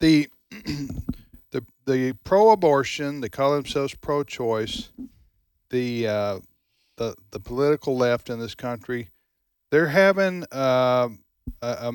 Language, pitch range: English, 110-145 Hz